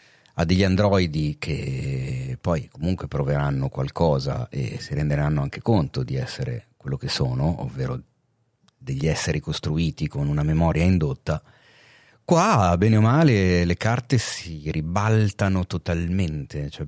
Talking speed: 125 wpm